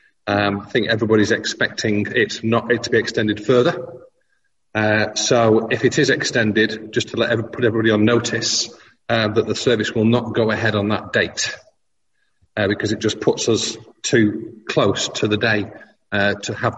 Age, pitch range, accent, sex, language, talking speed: 40-59, 105-120 Hz, British, male, English, 180 wpm